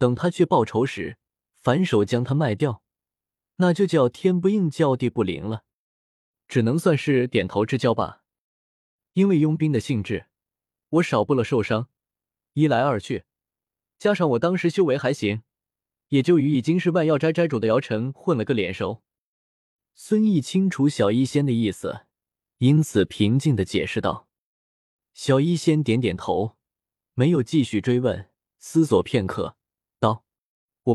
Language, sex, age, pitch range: Chinese, male, 20-39, 110-155 Hz